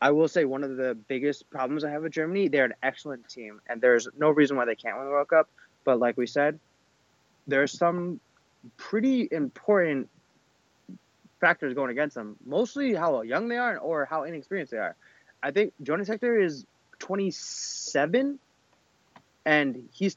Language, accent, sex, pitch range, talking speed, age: English, American, male, 135-180 Hz, 170 wpm, 20-39